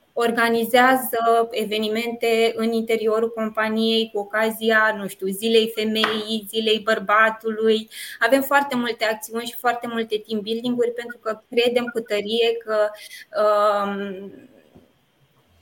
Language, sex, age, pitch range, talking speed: Romanian, female, 20-39, 220-245 Hz, 110 wpm